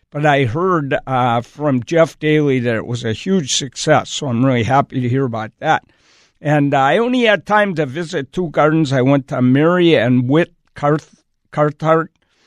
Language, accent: English, American